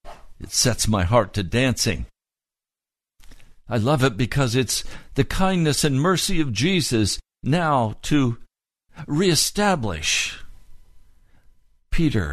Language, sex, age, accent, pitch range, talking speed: English, male, 60-79, American, 85-120 Hz, 100 wpm